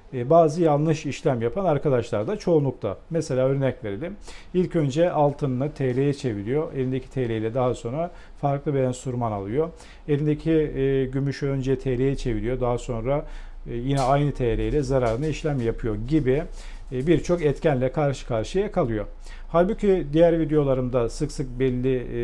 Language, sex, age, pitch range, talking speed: Turkish, male, 50-69, 130-165 Hz, 135 wpm